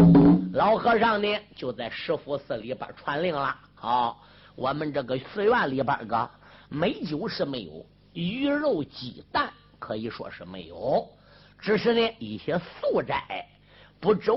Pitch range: 150-220 Hz